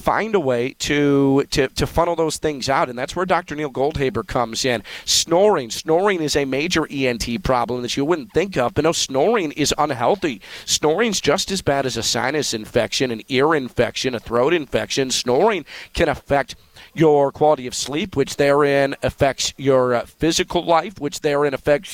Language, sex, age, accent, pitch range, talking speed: English, male, 40-59, American, 130-160 Hz, 180 wpm